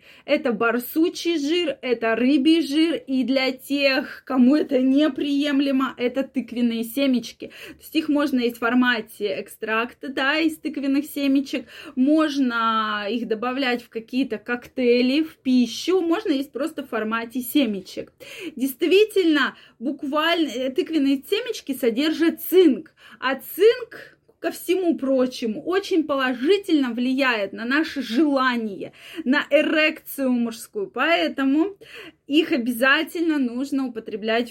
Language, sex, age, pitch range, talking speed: Russian, female, 20-39, 240-310 Hz, 115 wpm